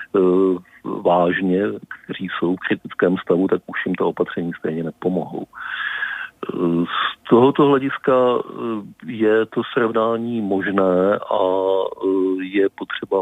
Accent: native